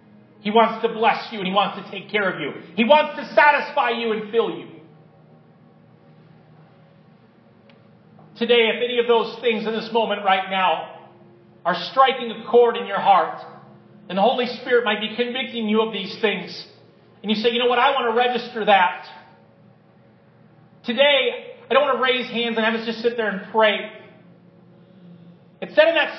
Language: English